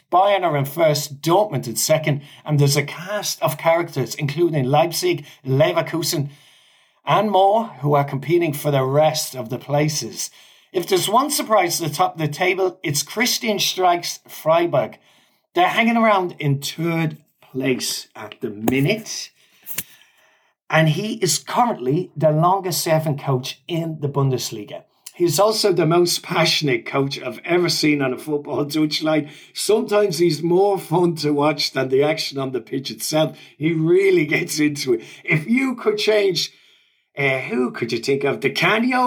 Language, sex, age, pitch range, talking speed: English, male, 30-49, 145-190 Hz, 160 wpm